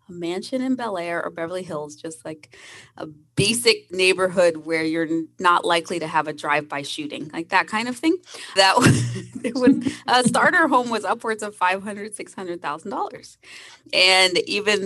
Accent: American